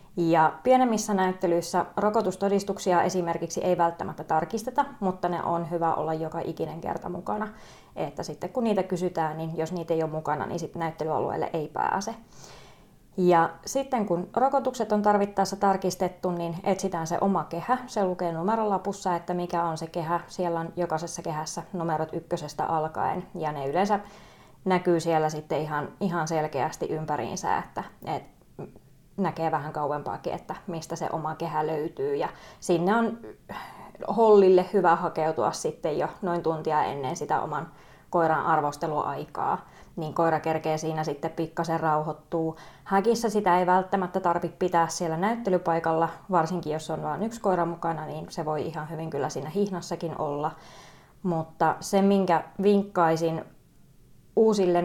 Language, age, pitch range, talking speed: Finnish, 20-39, 160-195 Hz, 140 wpm